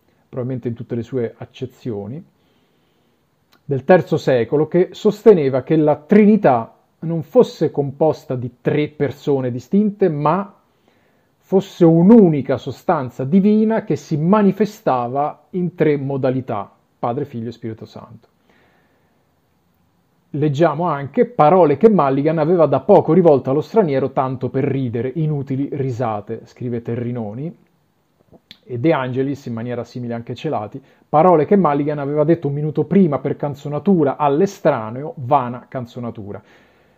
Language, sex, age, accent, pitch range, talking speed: Italian, male, 40-59, native, 130-165 Hz, 125 wpm